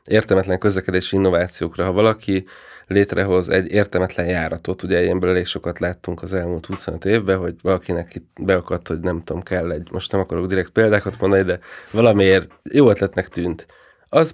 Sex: male